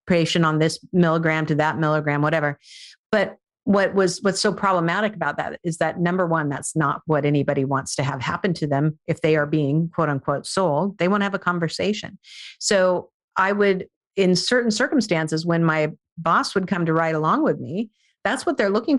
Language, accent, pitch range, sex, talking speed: English, American, 175-285 Hz, female, 200 wpm